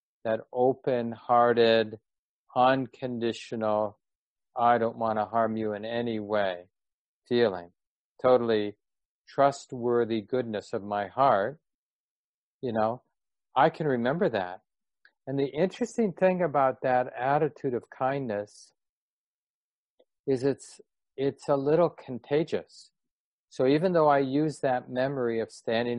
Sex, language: male, English